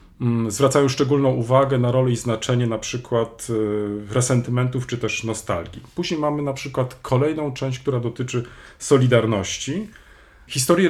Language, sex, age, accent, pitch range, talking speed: Polish, male, 40-59, native, 115-140 Hz, 125 wpm